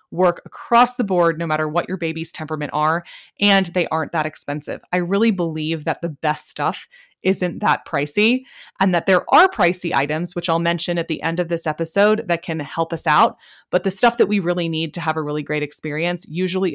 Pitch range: 160-190 Hz